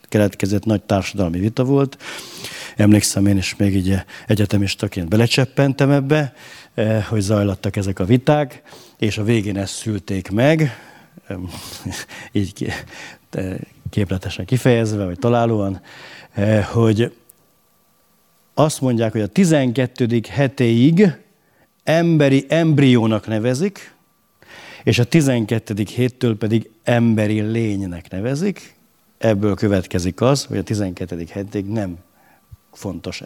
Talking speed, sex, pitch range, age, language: 100 wpm, male, 95-125 Hz, 50-69, Hungarian